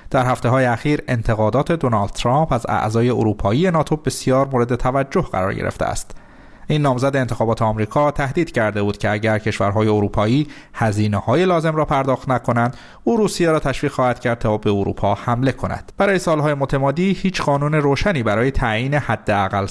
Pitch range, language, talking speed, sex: 110-145 Hz, Persian, 160 wpm, male